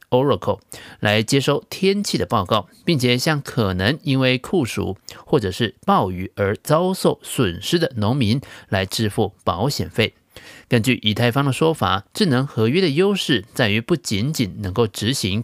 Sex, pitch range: male, 105-145 Hz